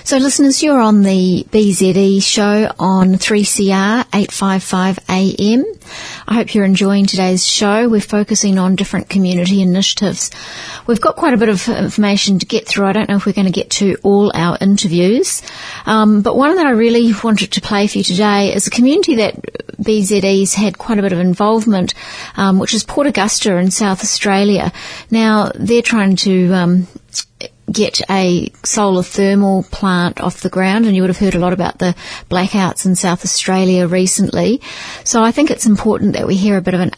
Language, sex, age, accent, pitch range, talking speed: English, female, 30-49, Australian, 180-210 Hz, 185 wpm